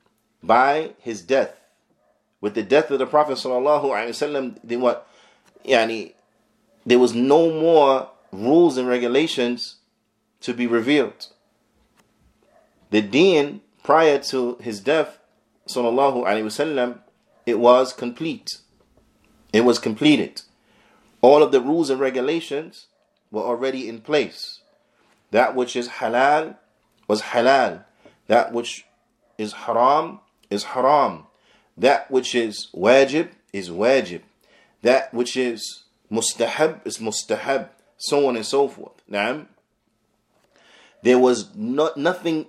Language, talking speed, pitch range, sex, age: English, 115 wpm, 120-150 Hz, male, 30-49